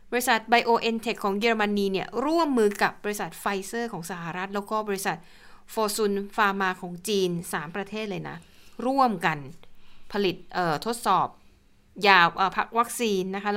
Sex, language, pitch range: female, Thai, 185-220 Hz